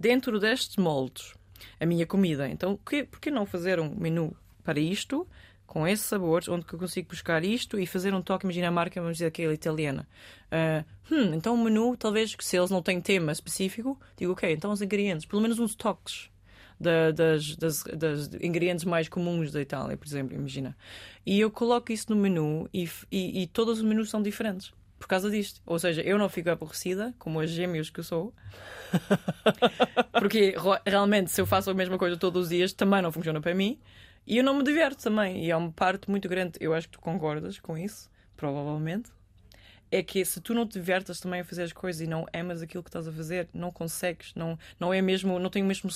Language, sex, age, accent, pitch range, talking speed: Portuguese, female, 20-39, Belgian, 160-200 Hz, 215 wpm